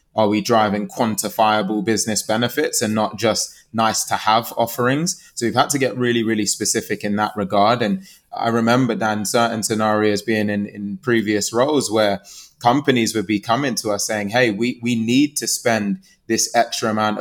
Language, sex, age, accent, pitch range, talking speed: English, male, 20-39, British, 105-115 Hz, 180 wpm